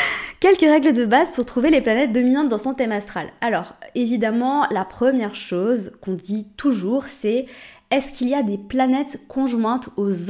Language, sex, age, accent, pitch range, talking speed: French, female, 20-39, French, 195-240 Hz, 175 wpm